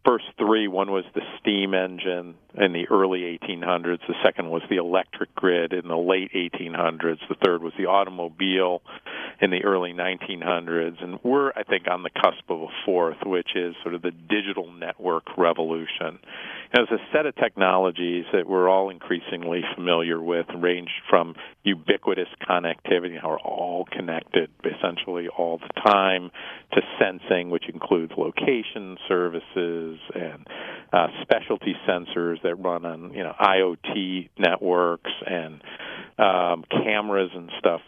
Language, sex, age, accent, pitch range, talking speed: English, male, 50-69, American, 85-95 Hz, 150 wpm